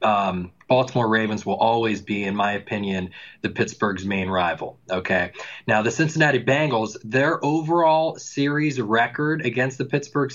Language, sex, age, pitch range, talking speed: English, male, 20-39, 120-150 Hz, 145 wpm